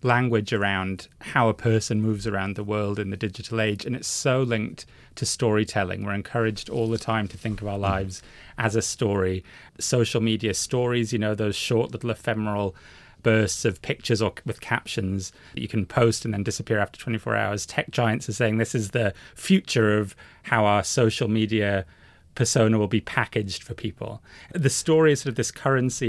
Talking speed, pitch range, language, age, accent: 190 wpm, 105-120 Hz, English, 30-49, British